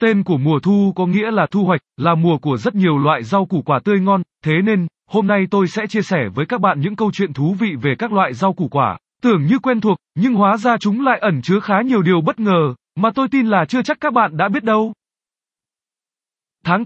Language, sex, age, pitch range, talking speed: Vietnamese, male, 20-39, 160-210 Hz, 250 wpm